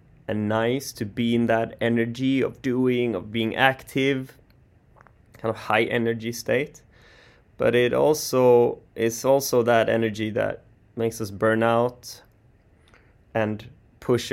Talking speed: 130 wpm